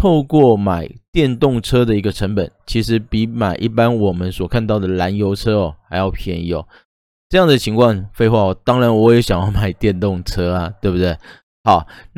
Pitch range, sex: 95-125 Hz, male